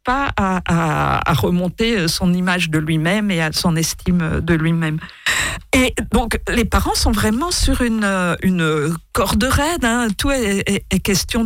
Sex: female